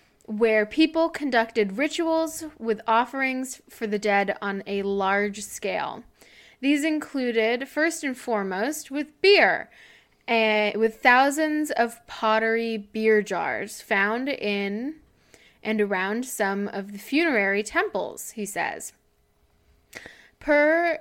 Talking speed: 110 wpm